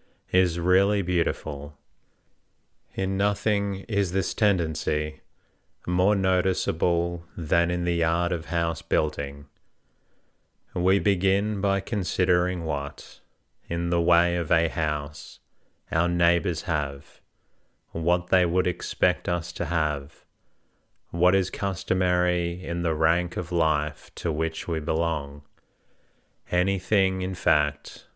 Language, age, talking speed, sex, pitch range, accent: English, 30-49, 115 wpm, male, 80-95 Hz, Australian